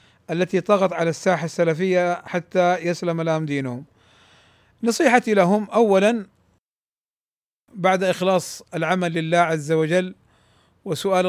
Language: Arabic